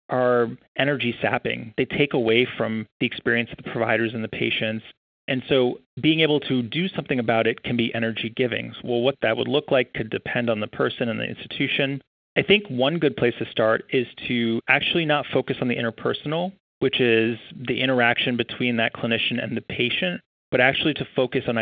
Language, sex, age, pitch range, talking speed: English, male, 30-49, 115-130 Hz, 205 wpm